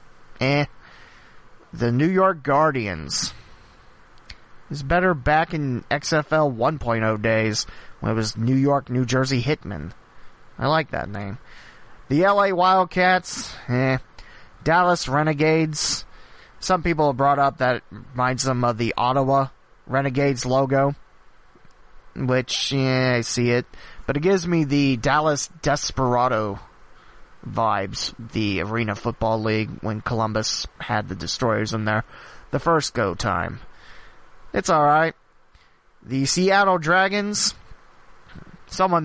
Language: English